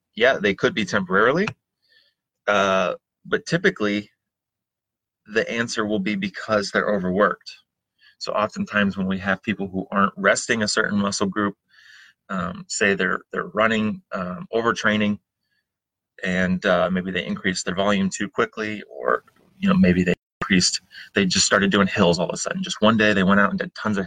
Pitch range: 95-115 Hz